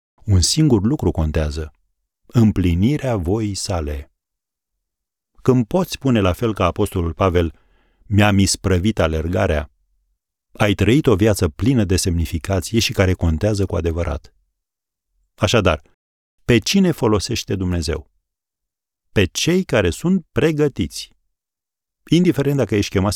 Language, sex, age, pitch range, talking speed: Romanian, male, 40-59, 85-115 Hz, 115 wpm